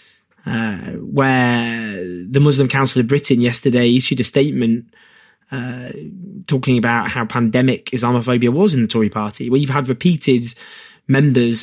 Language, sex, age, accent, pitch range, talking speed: English, male, 20-39, British, 125-150 Hz, 140 wpm